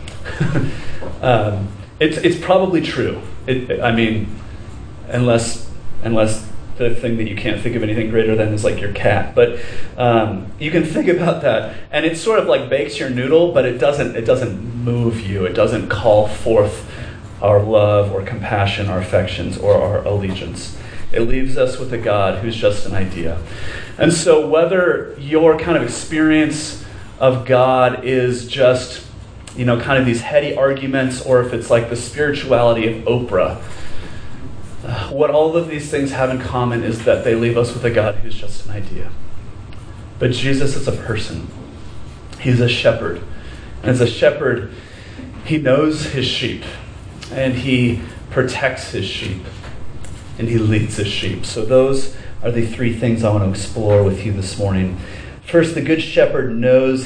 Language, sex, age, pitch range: English, male, 30-49, 105-130 Hz